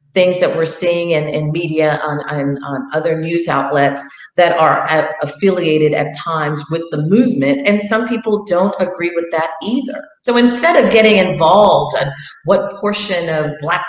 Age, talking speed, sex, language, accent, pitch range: 40-59, 175 wpm, female, English, American, 155-205 Hz